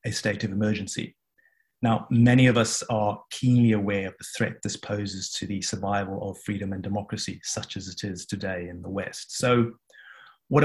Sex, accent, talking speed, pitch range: male, British, 185 wpm, 105-120 Hz